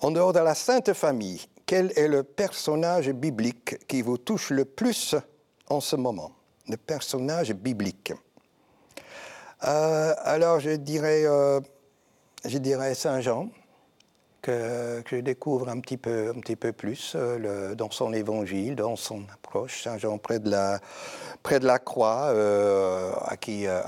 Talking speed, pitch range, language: 150 wpm, 115-165 Hz, French